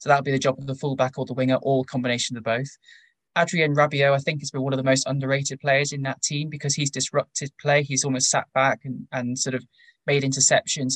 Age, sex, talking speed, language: 20-39, male, 250 wpm, English